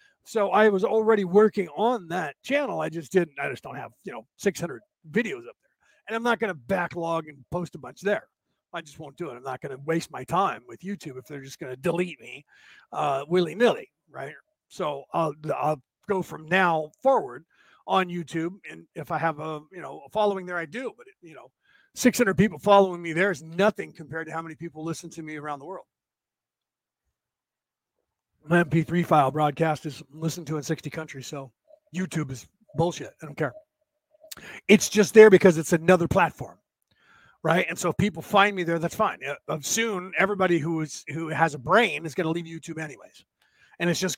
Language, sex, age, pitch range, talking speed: English, male, 50-69, 160-215 Hz, 205 wpm